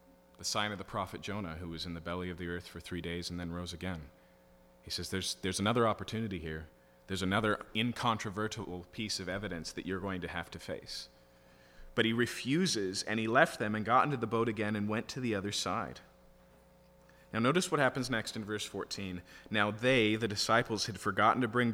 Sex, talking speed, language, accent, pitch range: male, 210 wpm, English, American, 85-115 Hz